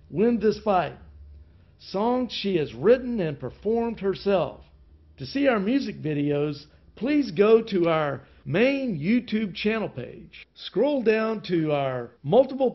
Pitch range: 135-220 Hz